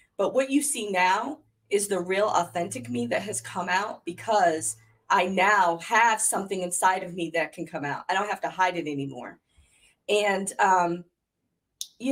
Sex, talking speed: female, 180 wpm